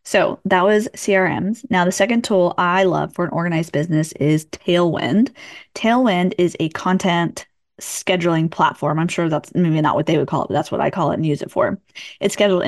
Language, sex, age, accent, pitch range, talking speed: English, female, 10-29, American, 165-210 Hz, 210 wpm